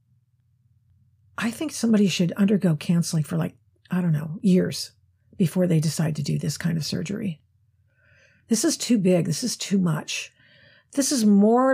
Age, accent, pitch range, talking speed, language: 50-69, American, 165-240 Hz, 165 wpm, English